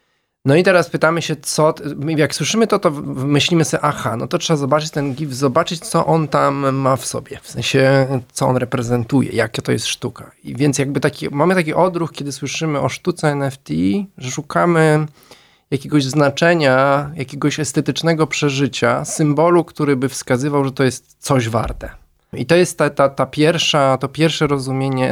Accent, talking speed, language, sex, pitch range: native, 170 wpm, Polish, male, 130-155 Hz